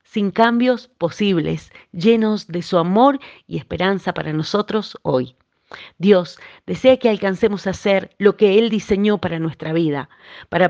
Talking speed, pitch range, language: 145 wpm, 175-220 Hz, Spanish